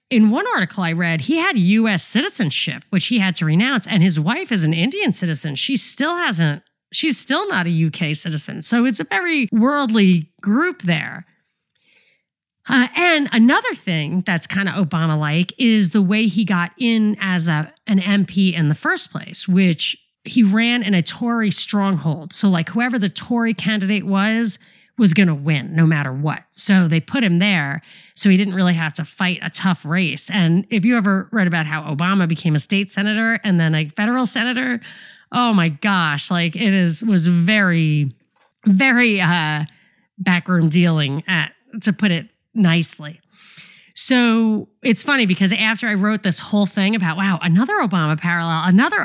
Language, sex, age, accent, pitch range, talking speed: English, female, 40-59, American, 170-215 Hz, 175 wpm